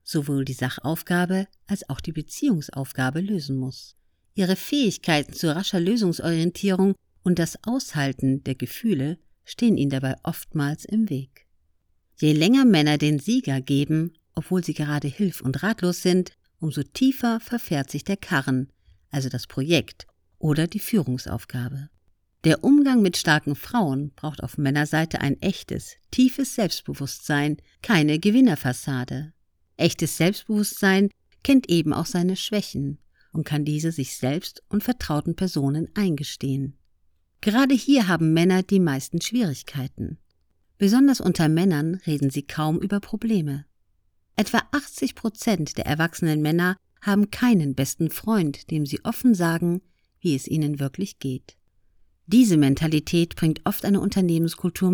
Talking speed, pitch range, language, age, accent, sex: 130 wpm, 140-195 Hz, German, 50-69, German, female